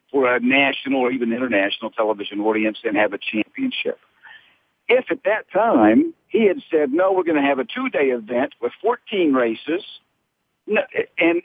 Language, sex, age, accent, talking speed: English, male, 50-69, American, 160 wpm